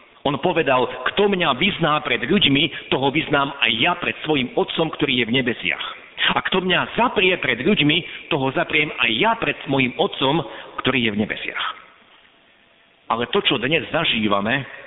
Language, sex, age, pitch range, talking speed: Slovak, male, 50-69, 125-175 Hz, 160 wpm